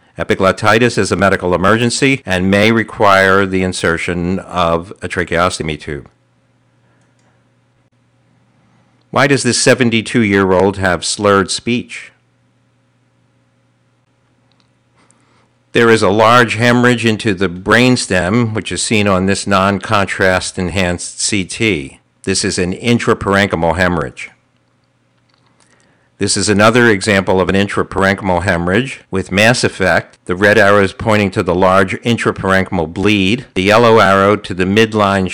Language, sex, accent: English, male, American